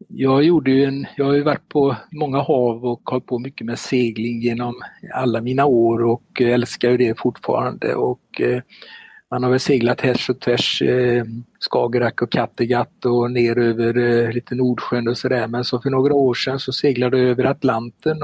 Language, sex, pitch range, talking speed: Swedish, male, 120-135 Hz, 180 wpm